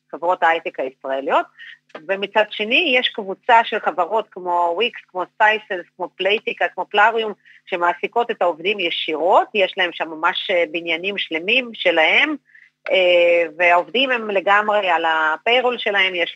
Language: Hebrew